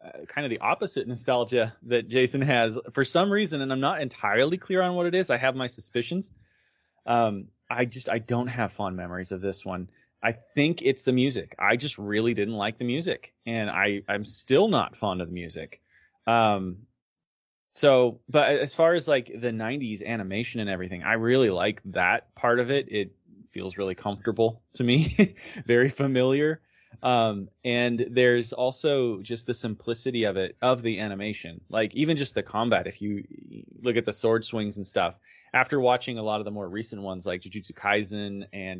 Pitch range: 100-125 Hz